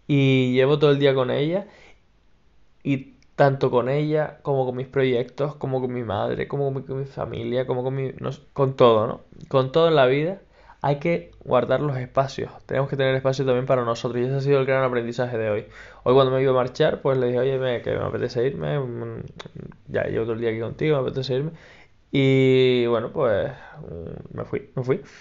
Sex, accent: male, Spanish